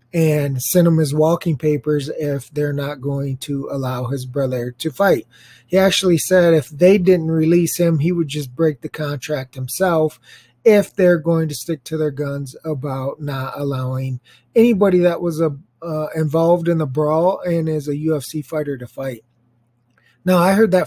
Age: 20-39